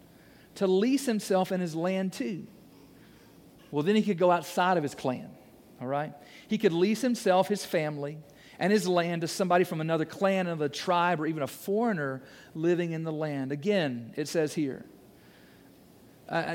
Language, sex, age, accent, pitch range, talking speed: English, male, 40-59, American, 150-205 Hz, 175 wpm